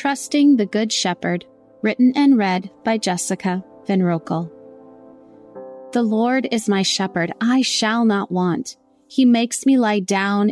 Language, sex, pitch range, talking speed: English, female, 185-240 Hz, 145 wpm